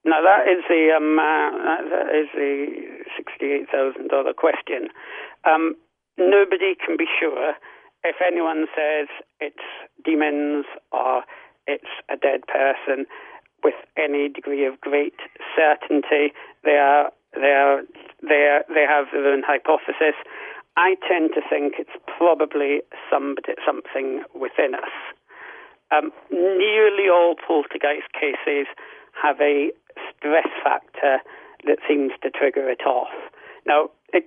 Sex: male